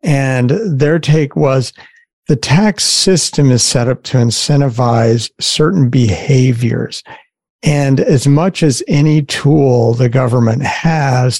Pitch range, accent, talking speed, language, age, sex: 125-150 Hz, American, 120 wpm, English, 50-69, male